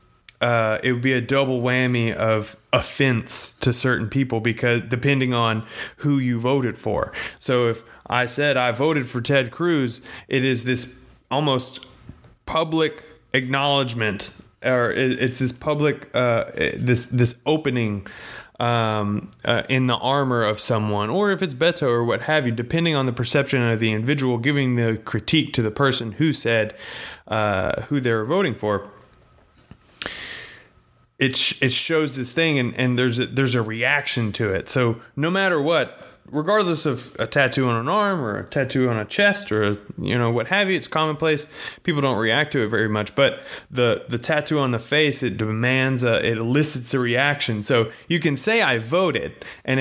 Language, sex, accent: English, male, American